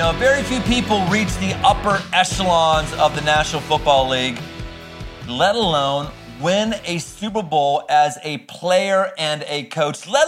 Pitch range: 130-185 Hz